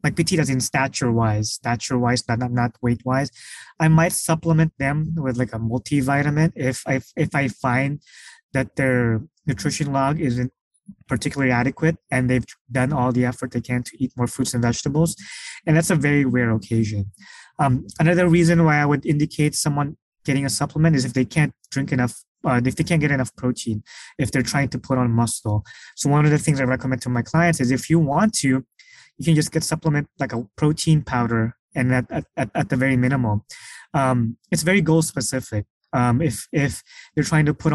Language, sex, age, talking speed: English, male, 20-39, 195 wpm